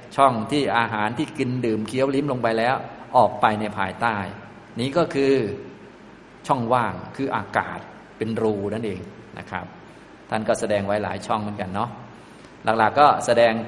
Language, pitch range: Thai, 105-125 Hz